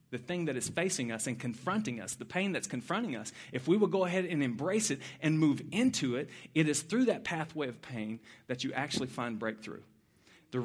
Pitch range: 130-195 Hz